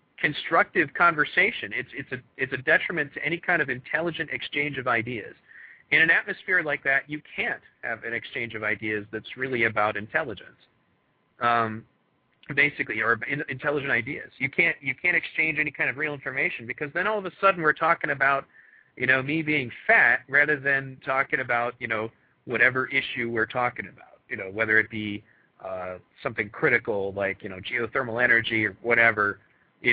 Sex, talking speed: male, 175 wpm